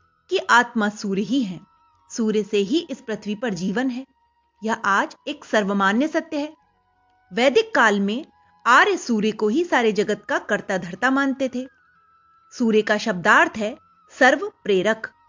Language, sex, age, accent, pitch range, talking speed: Hindi, female, 30-49, native, 215-320 Hz, 155 wpm